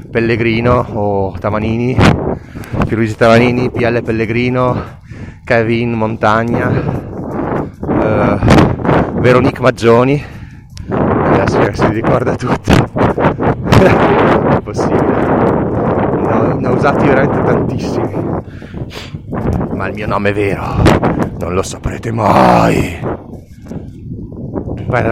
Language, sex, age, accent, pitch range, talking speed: Italian, male, 30-49, native, 105-125 Hz, 90 wpm